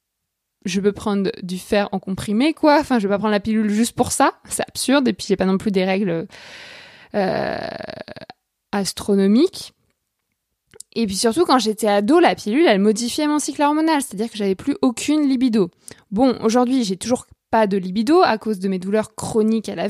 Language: French